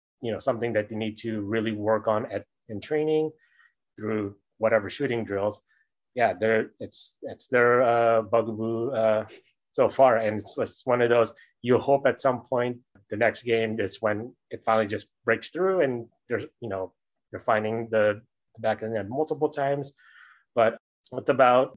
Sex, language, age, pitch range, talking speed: male, English, 30-49, 105-120 Hz, 170 wpm